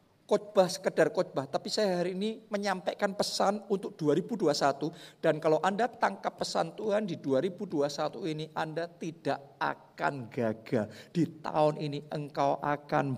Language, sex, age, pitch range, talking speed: Indonesian, male, 50-69, 150-255 Hz, 130 wpm